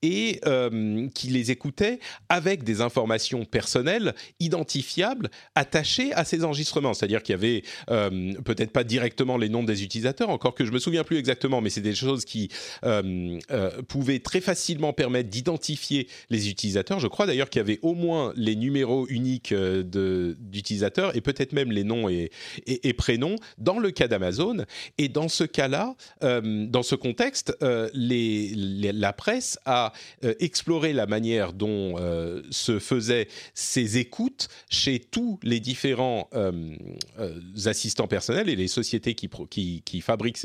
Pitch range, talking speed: 110-155 Hz, 165 wpm